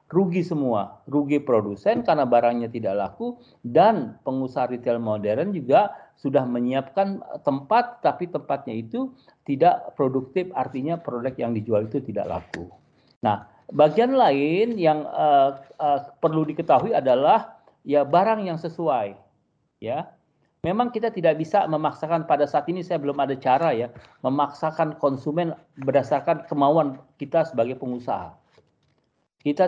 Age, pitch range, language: 40-59, 130-175 Hz, Indonesian